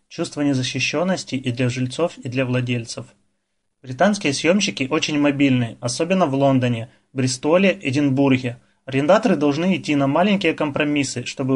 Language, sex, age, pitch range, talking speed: Russian, male, 20-39, 130-155 Hz, 125 wpm